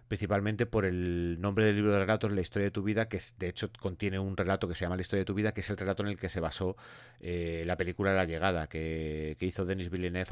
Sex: male